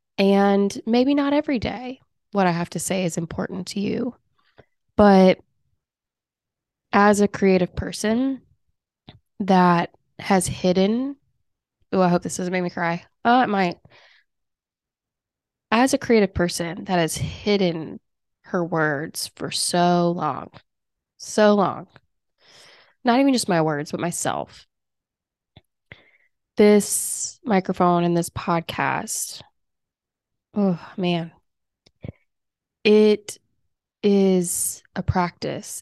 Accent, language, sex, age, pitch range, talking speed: American, English, female, 20-39, 175-215 Hz, 110 wpm